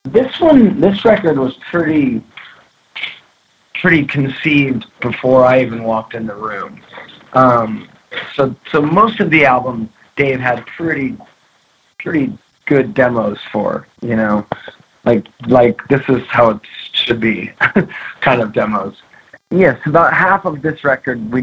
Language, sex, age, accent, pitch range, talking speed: English, male, 30-49, American, 115-150 Hz, 145 wpm